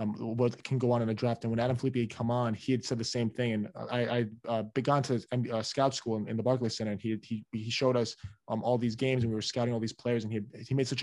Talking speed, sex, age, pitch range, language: 310 wpm, male, 20-39, 110-125 Hz, English